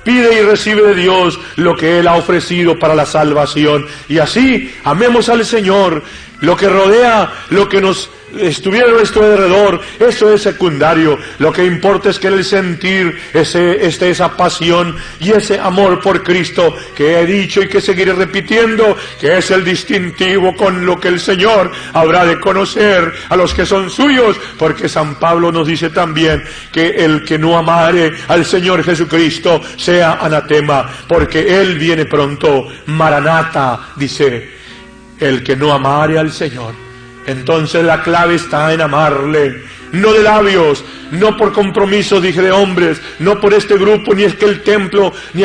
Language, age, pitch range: English, 40-59, 160-200 Hz